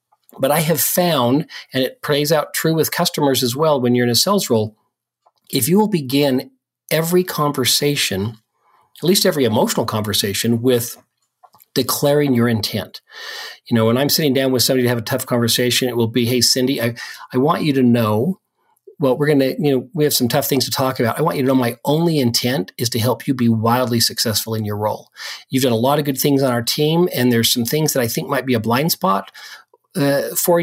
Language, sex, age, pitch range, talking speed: English, male, 40-59, 125-165 Hz, 225 wpm